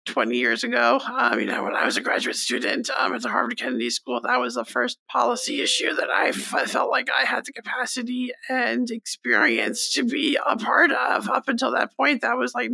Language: English